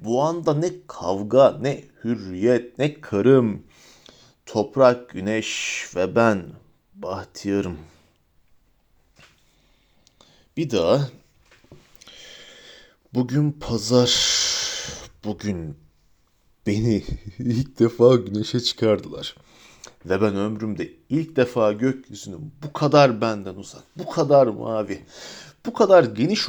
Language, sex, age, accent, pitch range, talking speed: Turkish, male, 40-59, native, 105-145 Hz, 90 wpm